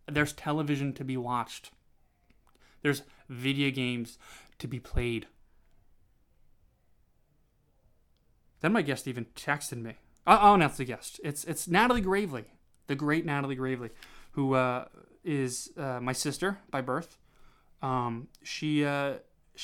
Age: 20-39